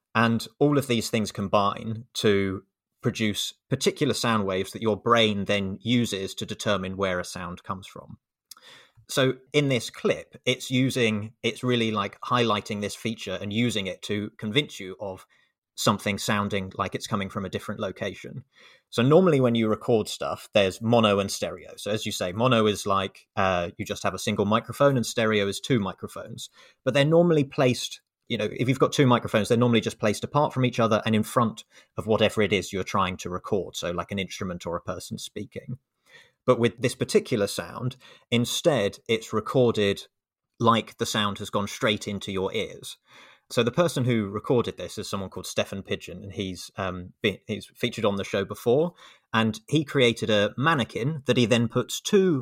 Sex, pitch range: male, 100-125 Hz